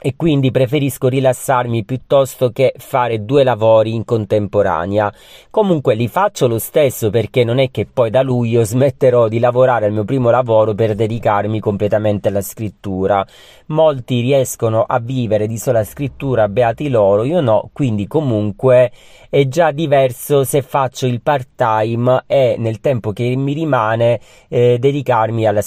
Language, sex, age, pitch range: Italian, male, 40-59, 115-140 Hz